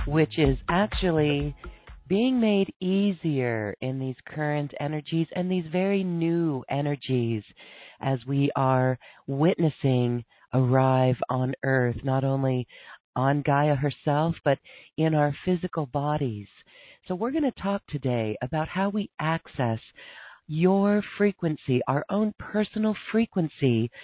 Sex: female